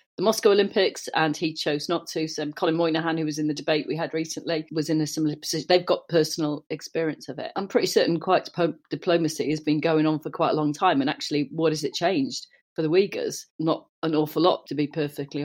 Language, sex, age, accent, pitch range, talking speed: English, female, 40-59, British, 155-205 Hz, 230 wpm